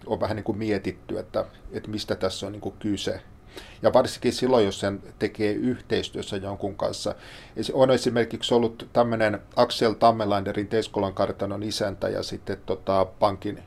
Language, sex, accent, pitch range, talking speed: Finnish, male, native, 105-115 Hz, 150 wpm